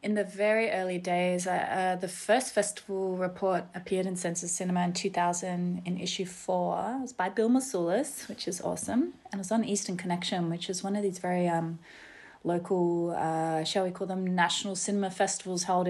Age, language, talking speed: 20-39, English, 195 wpm